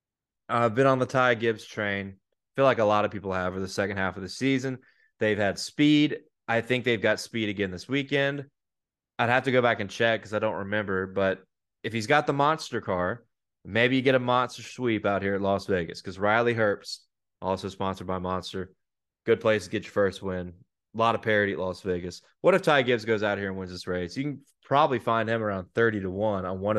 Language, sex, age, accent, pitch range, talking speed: English, male, 20-39, American, 95-125 Hz, 235 wpm